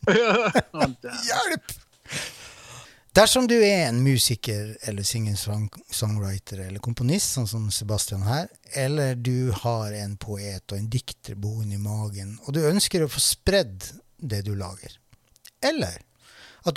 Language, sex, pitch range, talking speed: English, male, 105-135 Hz, 125 wpm